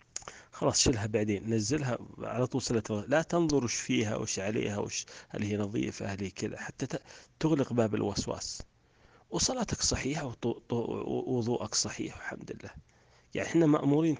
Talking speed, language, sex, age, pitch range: 125 wpm, Arabic, male, 40-59, 110-150 Hz